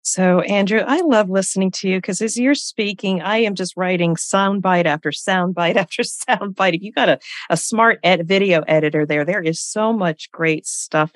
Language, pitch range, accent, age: English, 130-165 Hz, American, 40-59